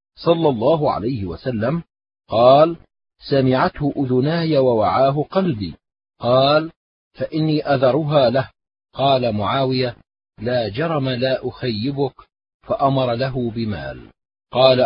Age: 40-59